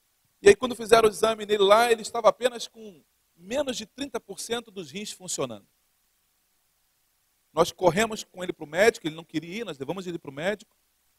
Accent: Brazilian